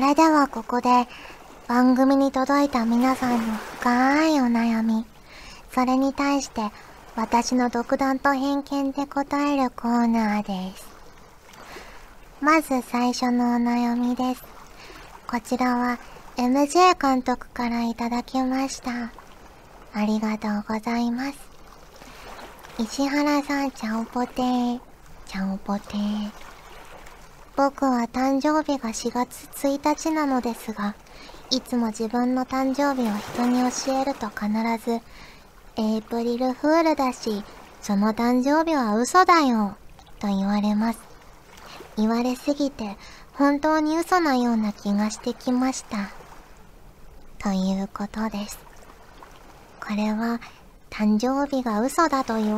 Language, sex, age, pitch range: Japanese, male, 40-59, 220-270 Hz